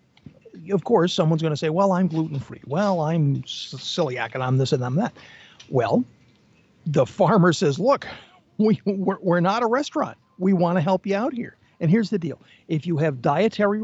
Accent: American